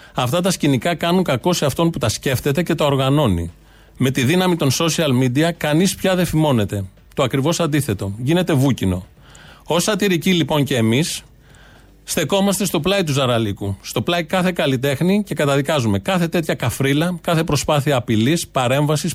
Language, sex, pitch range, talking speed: Greek, male, 120-165 Hz, 160 wpm